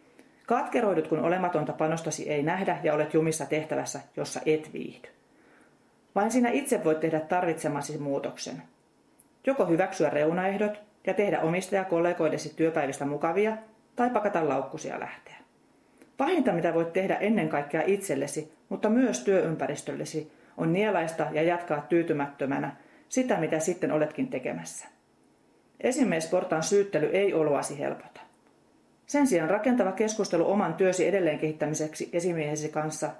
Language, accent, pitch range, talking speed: Finnish, native, 155-195 Hz, 125 wpm